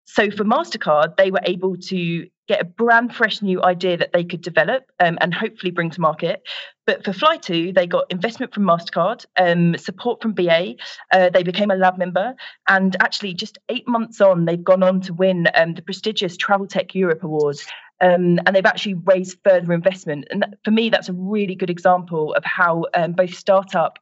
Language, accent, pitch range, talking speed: English, British, 175-205 Hz, 195 wpm